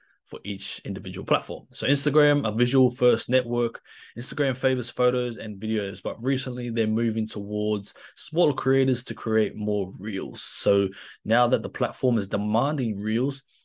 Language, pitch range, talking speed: English, 105-125 Hz, 150 wpm